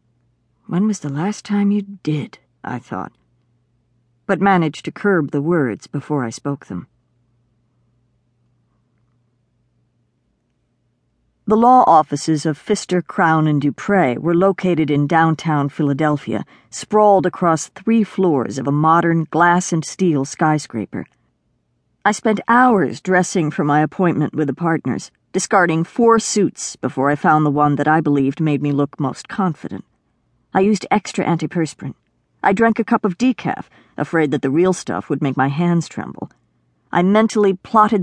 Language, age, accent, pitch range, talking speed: English, 50-69, American, 135-190 Hz, 140 wpm